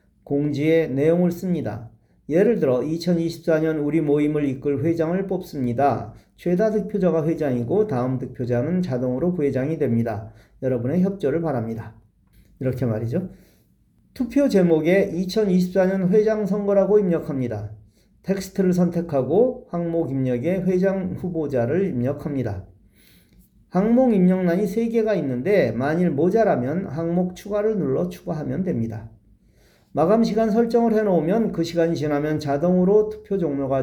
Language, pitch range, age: Korean, 125-190 Hz, 40-59